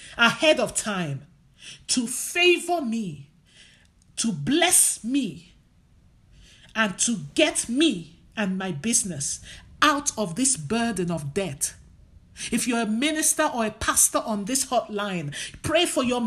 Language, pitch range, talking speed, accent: English, 175-290 Hz, 130 wpm, Nigerian